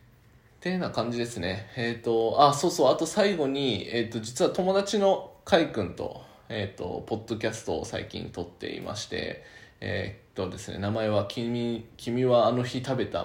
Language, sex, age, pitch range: Japanese, male, 20-39, 100-125 Hz